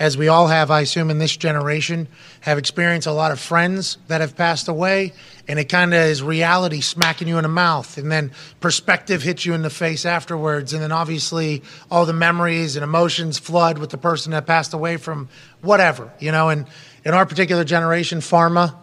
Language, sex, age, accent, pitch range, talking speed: English, male, 30-49, American, 155-175 Hz, 205 wpm